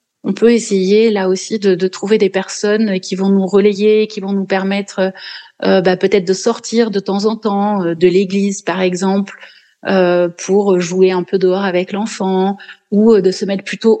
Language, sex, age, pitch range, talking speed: French, female, 30-49, 190-225 Hz, 190 wpm